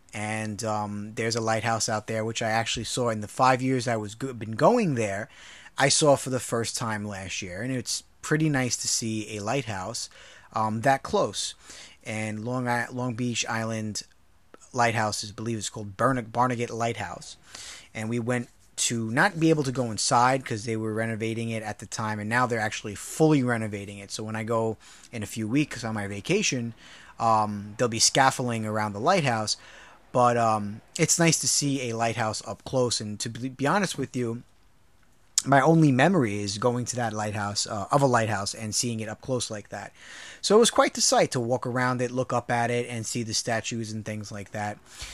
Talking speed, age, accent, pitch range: 205 wpm, 30-49, American, 110-130 Hz